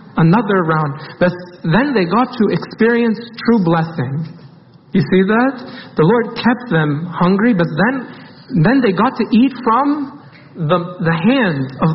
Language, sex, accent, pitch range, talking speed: English, male, American, 150-210 Hz, 150 wpm